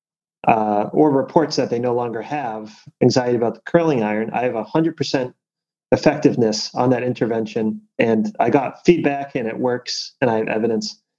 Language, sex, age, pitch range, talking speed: English, male, 30-49, 110-150 Hz, 165 wpm